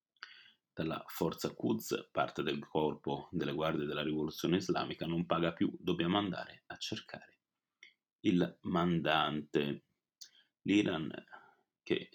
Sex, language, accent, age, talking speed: male, Italian, native, 30-49, 110 wpm